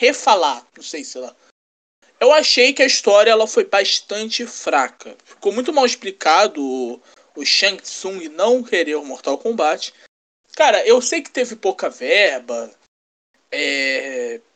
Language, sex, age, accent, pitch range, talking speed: Portuguese, male, 20-39, Brazilian, 220-285 Hz, 150 wpm